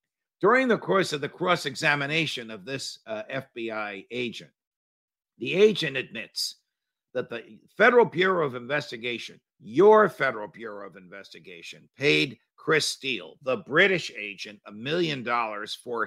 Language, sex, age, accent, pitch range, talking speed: English, male, 50-69, American, 105-135 Hz, 130 wpm